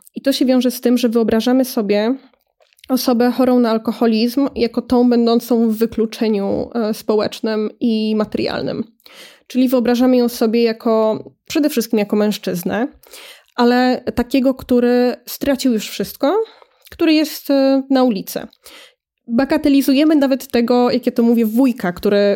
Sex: female